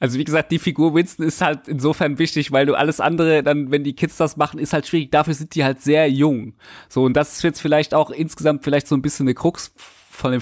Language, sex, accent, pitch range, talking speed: German, male, German, 135-160 Hz, 260 wpm